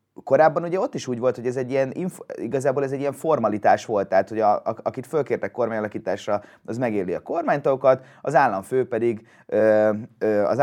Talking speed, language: 170 wpm, Hungarian